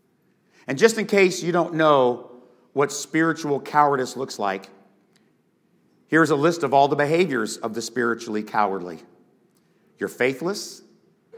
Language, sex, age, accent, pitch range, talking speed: English, male, 50-69, American, 125-180 Hz, 130 wpm